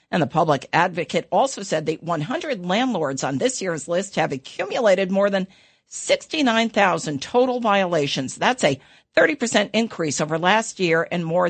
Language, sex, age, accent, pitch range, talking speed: English, female, 50-69, American, 160-200 Hz, 150 wpm